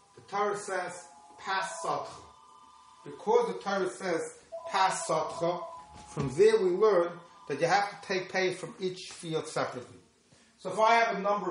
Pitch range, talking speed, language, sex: 155-195 Hz, 145 wpm, English, male